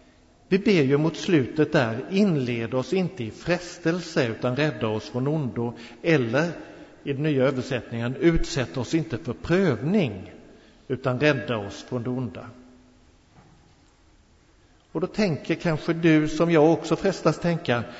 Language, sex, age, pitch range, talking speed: Swedish, male, 50-69, 115-160 Hz, 140 wpm